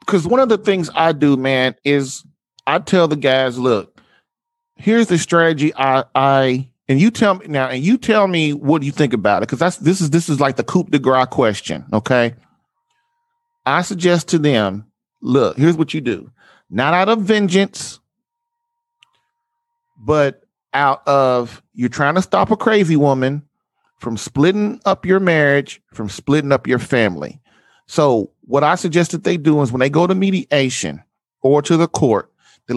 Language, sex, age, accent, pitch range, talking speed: English, male, 40-59, American, 130-175 Hz, 180 wpm